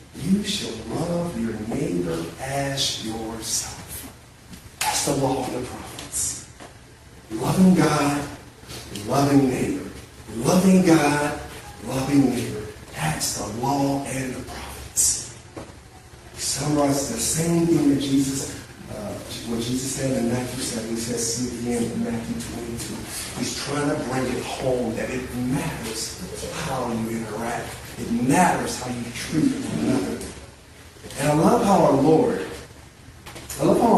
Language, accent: English, American